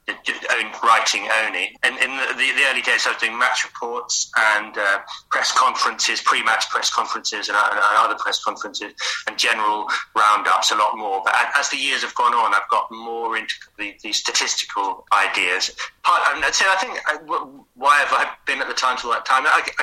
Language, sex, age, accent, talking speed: English, male, 30-49, British, 200 wpm